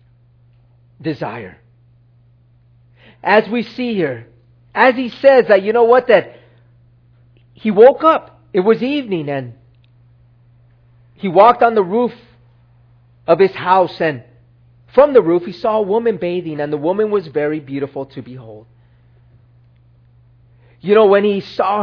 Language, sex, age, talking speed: English, male, 40-59, 135 wpm